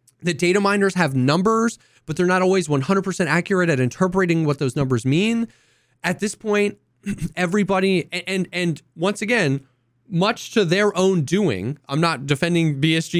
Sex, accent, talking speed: male, American, 160 wpm